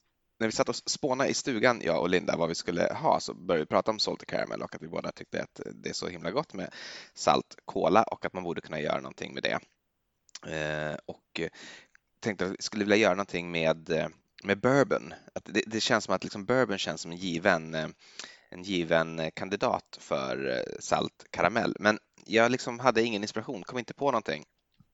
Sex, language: male, Swedish